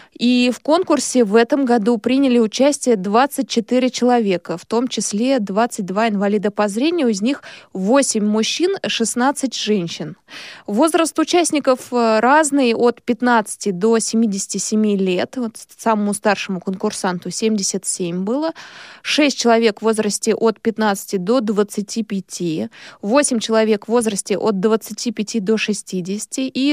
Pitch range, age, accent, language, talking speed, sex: 205-255 Hz, 20-39, native, Russian, 120 wpm, female